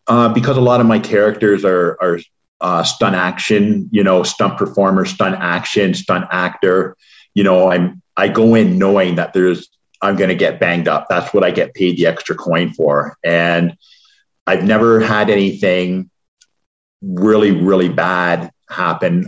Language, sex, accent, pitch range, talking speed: English, male, American, 85-105 Hz, 165 wpm